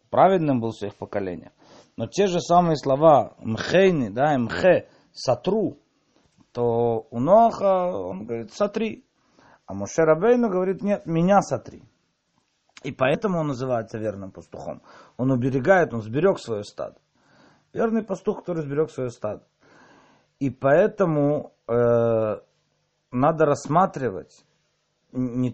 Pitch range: 120-185 Hz